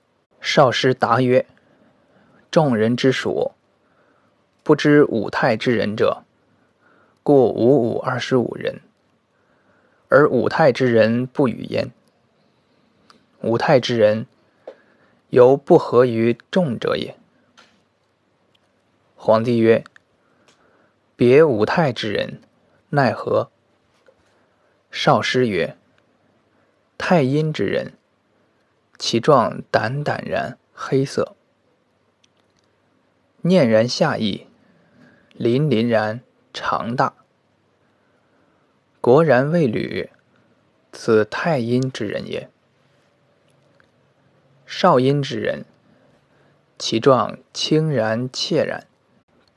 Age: 20-39